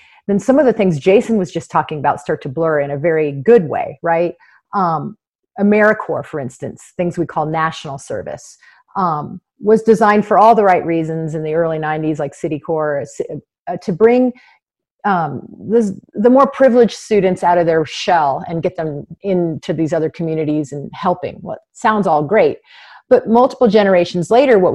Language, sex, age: English, female, 30-49